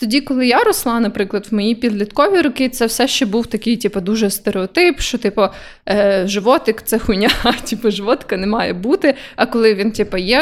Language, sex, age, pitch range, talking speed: Ukrainian, female, 20-39, 205-250 Hz, 185 wpm